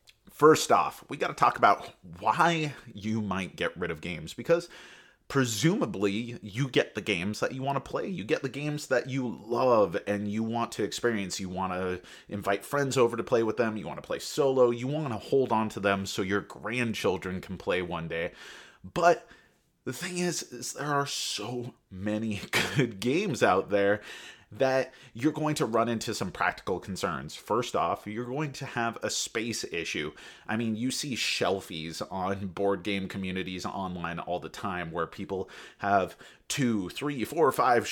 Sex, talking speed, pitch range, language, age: male, 185 wpm, 100-130 Hz, English, 30-49